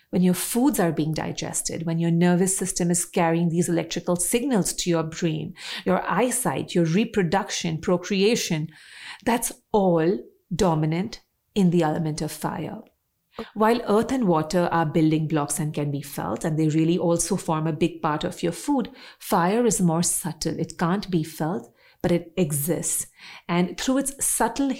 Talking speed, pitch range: 165 wpm, 165-200 Hz